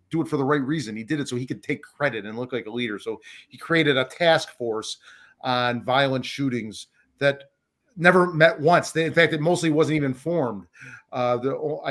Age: 40-59